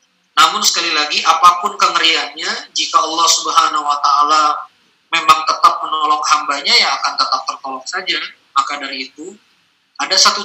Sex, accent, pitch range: male, native, 145-180 Hz